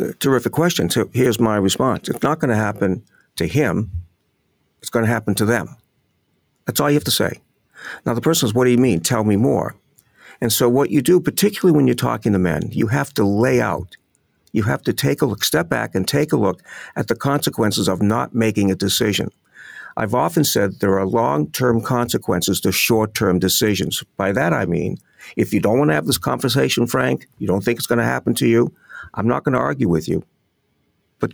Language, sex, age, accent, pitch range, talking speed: English, male, 50-69, American, 100-130 Hz, 215 wpm